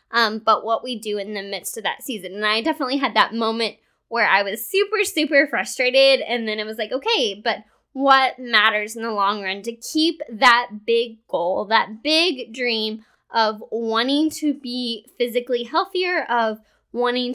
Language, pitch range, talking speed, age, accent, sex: English, 215-265 Hz, 180 wpm, 20-39, American, female